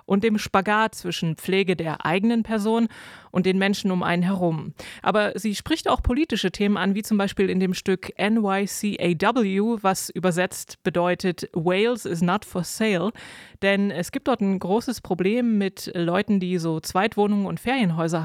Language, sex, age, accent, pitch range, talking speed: German, female, 20-39, German, 185-220 Hz, 165 wpm